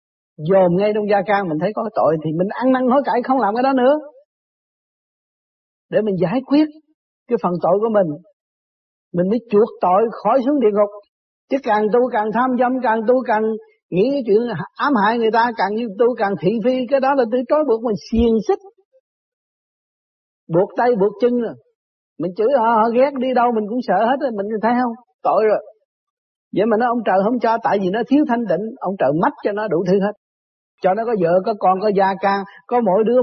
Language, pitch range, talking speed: Vietnamese, 195-255 Hz, 220 wpm